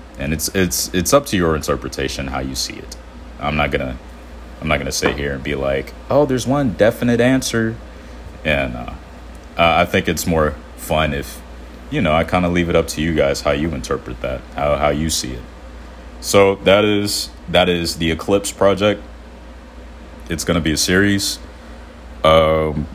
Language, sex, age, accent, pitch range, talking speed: English, male, 30-49, American, 65-80 Hz, 185 wpm